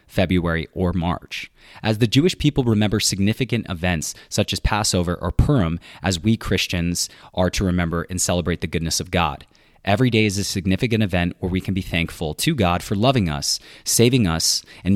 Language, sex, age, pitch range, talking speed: English, male, 20-39, 90-110 Hz, 185 wpm